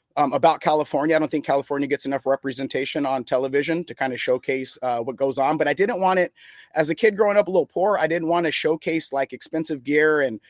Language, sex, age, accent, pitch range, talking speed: English, male, 30-49, American, 135-160 Hz, 240 wpm